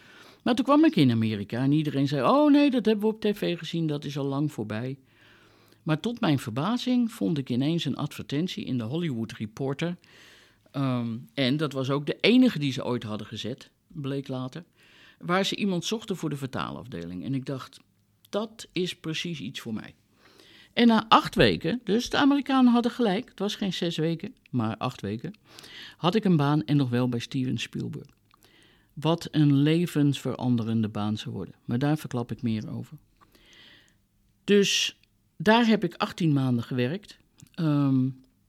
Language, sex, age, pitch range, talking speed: English, male, 50-69, 125-190 Hz, 175 wpm